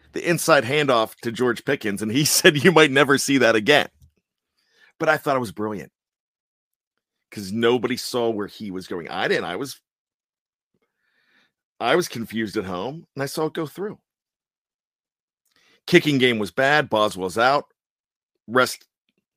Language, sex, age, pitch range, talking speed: English, male, 40-59, 115-155 Hz, 155 wpm